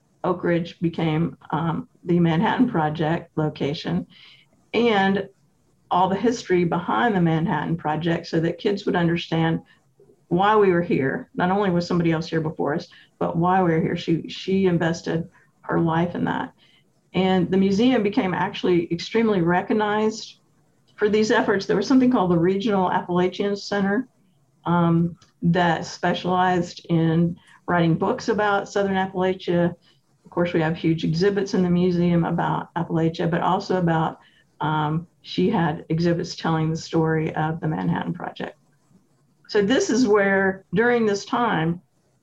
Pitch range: 165-195 Hz